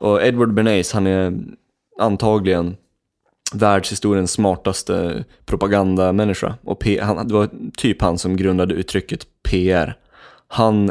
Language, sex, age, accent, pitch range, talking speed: Swedish, male, 20-39, native, 95-110 Hz, 115 wpm